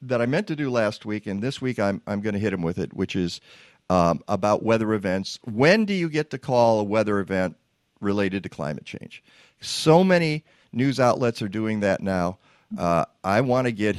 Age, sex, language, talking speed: 50-69, male, English, 215 wpm